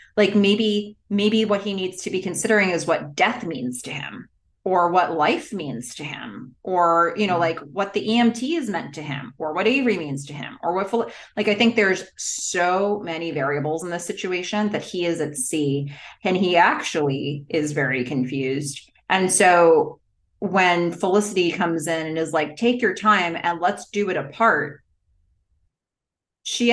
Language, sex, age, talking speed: English, female, 30-49, 180 wpm